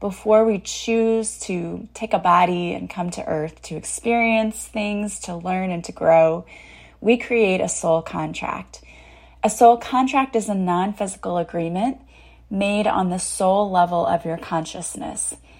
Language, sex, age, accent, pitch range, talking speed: English, female, 20-39, American, 170-220 Hz, 150 wpm